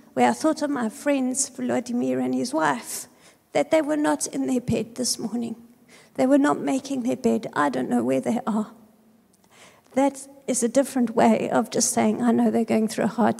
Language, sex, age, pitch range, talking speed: English, female, 50-69, 215-250 Hz, 205 wpm